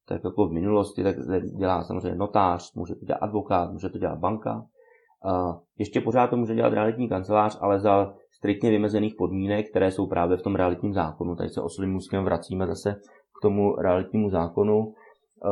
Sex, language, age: male, Czech, 30-49